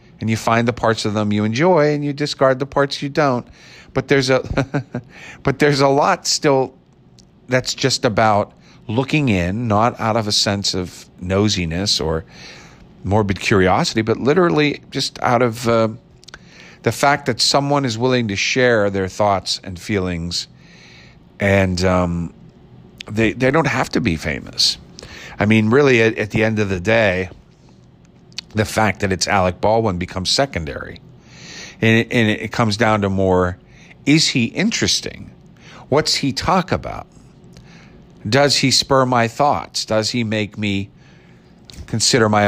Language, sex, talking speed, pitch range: English, male, 155 wpm, 95-130 Hz